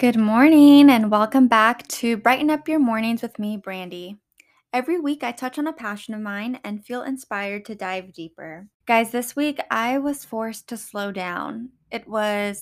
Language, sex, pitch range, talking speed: English, female, 195-240 Hz, 185 wpm